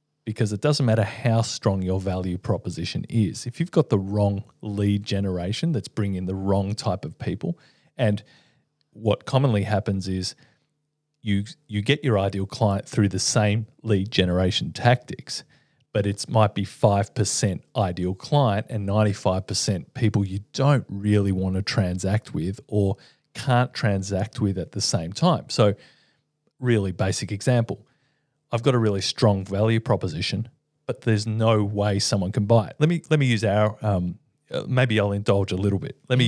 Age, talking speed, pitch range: 40-59, 165 wpm, 100-130 Hz